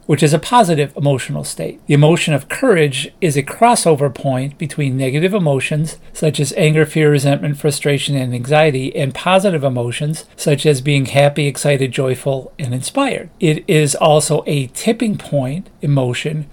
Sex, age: male, 40-59